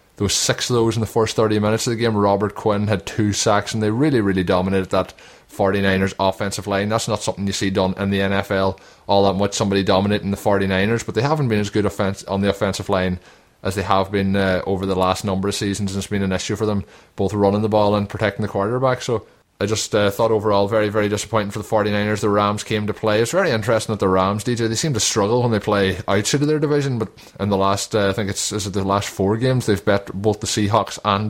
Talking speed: 250 wpm